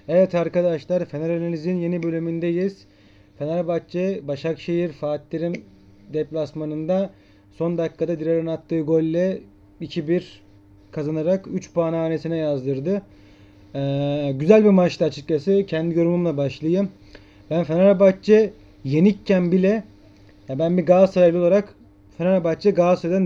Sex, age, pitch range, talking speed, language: male, 30-49, 145-185 Hz, 105 wpm, Turkish